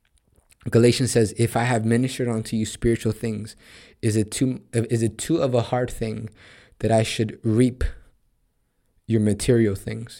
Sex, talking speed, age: male, 160 wpm, 20-39